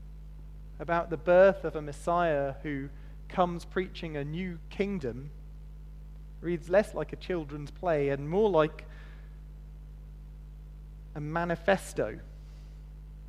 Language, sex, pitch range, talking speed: English, male, 145-165 Hz, 105 wpm